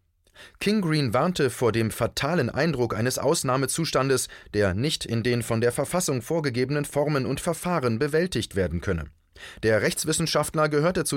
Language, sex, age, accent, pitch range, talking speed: German, male, 30-49, German, 105-150 Hz, 145 wpm